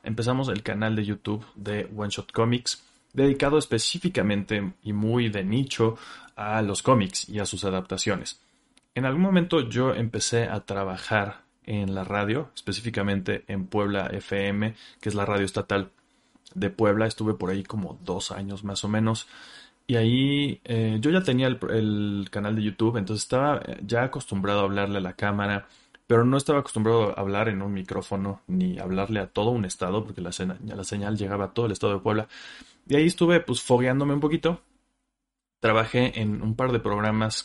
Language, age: Spanish, 30-49